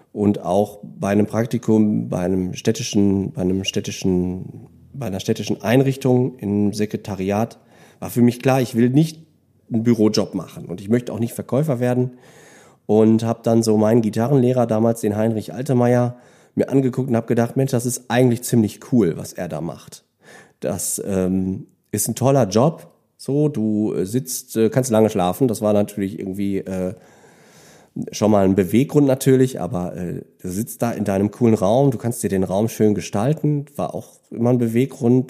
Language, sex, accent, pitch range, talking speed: German, male, German, 100-125 Hz, 175 wpm